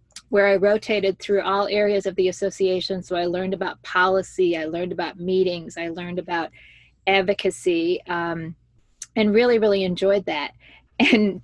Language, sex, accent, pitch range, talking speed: English, female, American, 185-210 Hz, 150 wpm